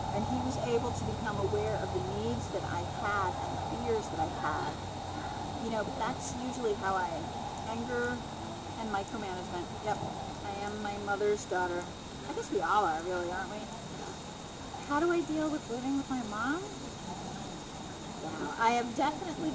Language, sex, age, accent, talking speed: English, female, 30-49, American, 170 wpm